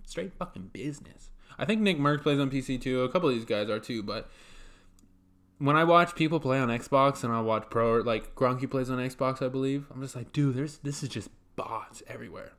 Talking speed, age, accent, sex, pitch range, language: 230 wpm, 20-39, American, male, 105-140 Hz, English